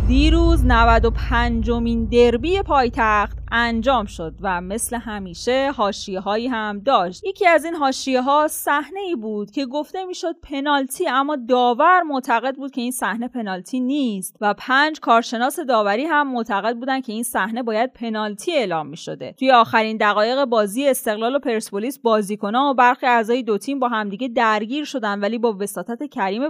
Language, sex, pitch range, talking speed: Persian, female, 215-275 Hz, 160 wpm